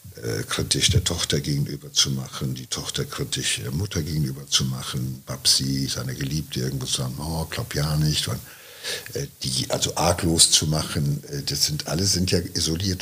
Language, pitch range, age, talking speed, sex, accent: German, 80-105 Hz, 60-79, 185 wpm, male, German